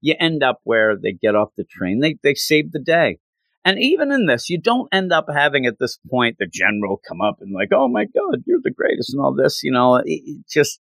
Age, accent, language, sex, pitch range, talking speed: 40-59, American, English, male, 110-165 Hz, 245 wpm